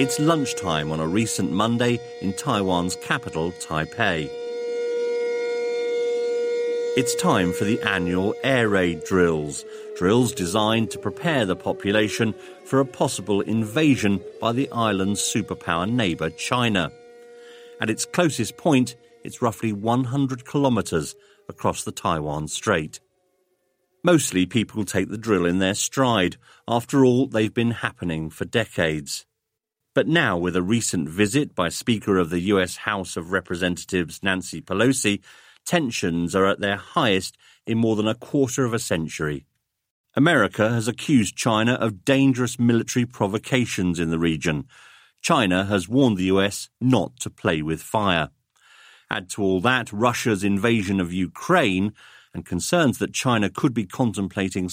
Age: 40-59